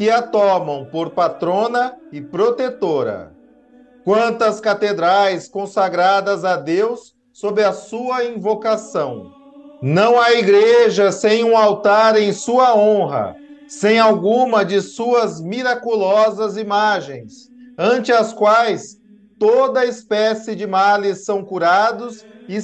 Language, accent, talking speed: Portuguese, Brazilian, 110 wpm